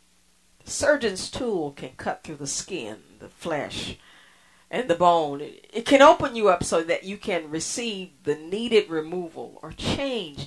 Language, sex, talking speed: English, female, 160 wpm